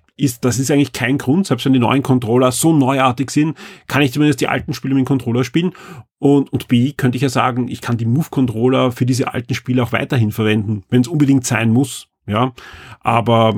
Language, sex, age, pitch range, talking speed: German, male, 40-59, 125-150 Hz, 210 wpm